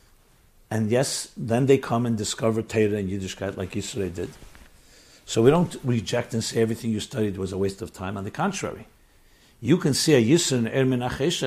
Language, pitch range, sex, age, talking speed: English, 125-205 Hz, male, 60-79, 185 wpm